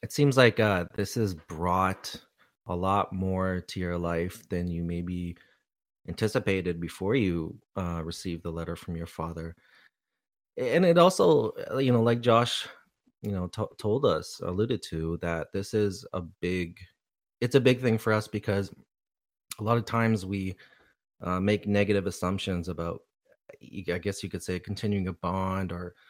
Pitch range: 90-110 Hz